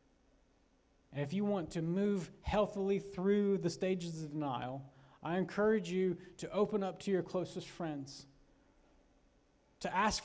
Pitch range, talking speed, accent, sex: 145-195 Hz, 140 wpm, American, male